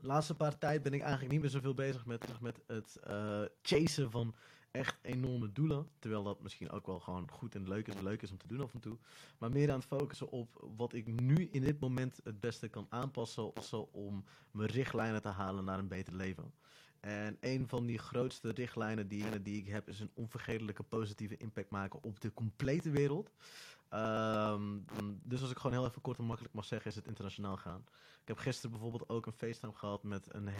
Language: Dutch